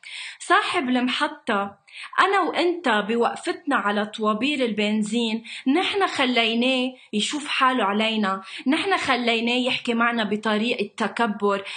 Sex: female